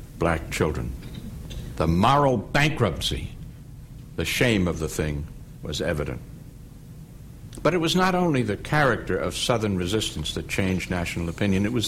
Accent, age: American, 60-79